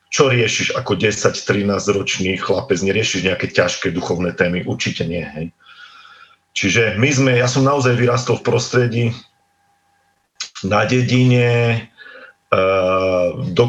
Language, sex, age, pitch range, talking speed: Slovak, male, 40-59, 105-130 Hz, 105 wpm